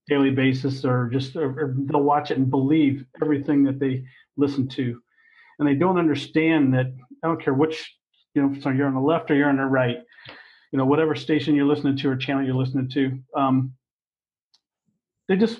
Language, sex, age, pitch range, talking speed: English, male, 40-59, 135-155 Hz, 190 wpm